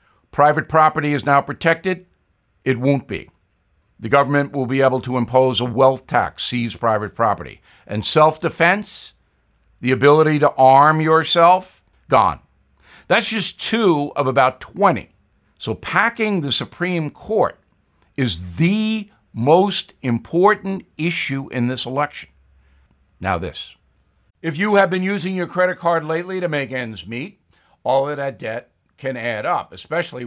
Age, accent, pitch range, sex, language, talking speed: 60-79, American, 120-165 Hz, male, English, 140 wpm